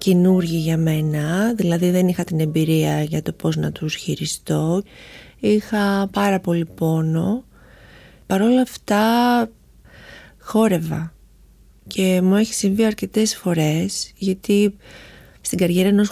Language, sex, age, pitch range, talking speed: Greek, female, 30-49, 175-210 Hz, 115 wpm